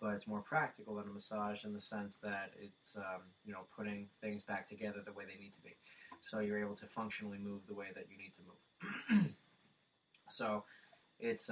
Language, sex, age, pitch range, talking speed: English, male, 20-39, 100-110 Hz, 210 wpm